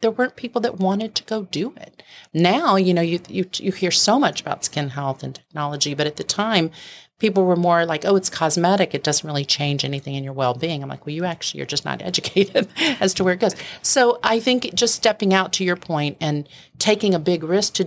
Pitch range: 140-175 Hz